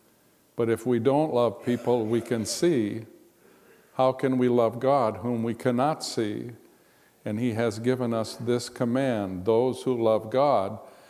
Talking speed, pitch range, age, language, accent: 155 wpm, 110-125 Hz, 50-69, English, American